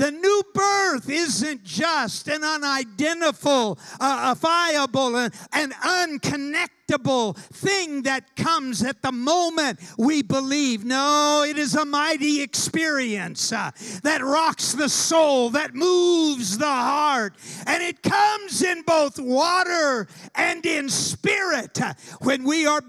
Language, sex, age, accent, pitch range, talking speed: English, male, 50-69, American, 245-335 Hz, 120 wpm